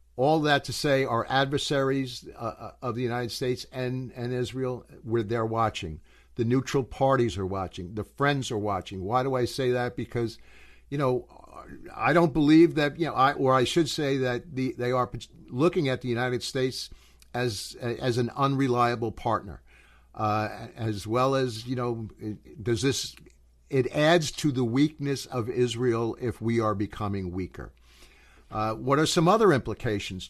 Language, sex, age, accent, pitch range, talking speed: English, male, 60-79, American, 110-135 Hz, 170 wpm